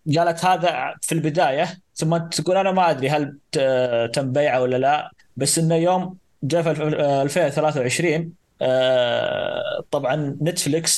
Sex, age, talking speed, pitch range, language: male, 20-39, 115 wpm, 125-160 Hz, Arabic